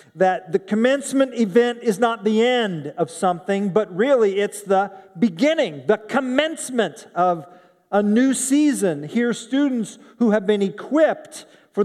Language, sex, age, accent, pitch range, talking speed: English, male, 40-59, American, 205-255 Hz, 145 wpm